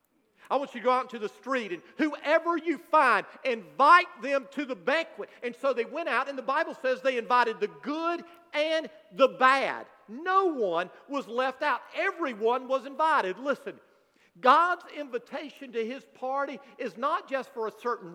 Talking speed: 180 wpm